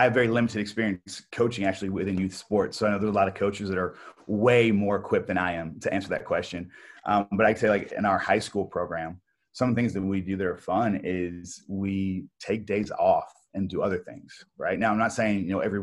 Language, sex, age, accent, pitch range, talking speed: English, male, 30-49, American, 95-110 Hz, 255 wpm